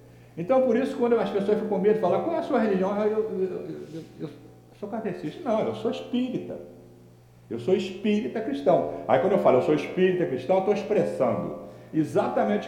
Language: Portuguese